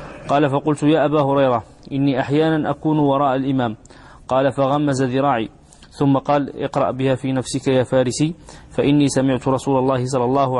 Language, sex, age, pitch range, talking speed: English, male, 30-49, 130-145 Hz, 155 wpm